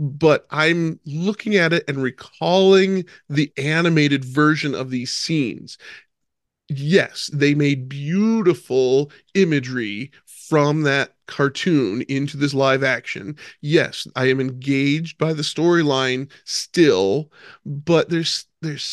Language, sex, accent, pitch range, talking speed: English, male, American, 140-170 Hz, 115 wpm